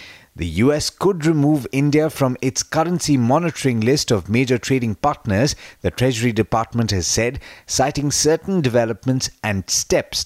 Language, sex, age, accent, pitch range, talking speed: English, male, 30-49, Indian, 110-145 Hz, 140 wpm